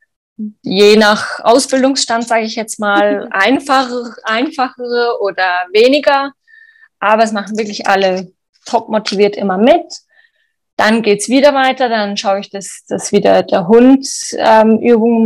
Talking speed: 140 wpm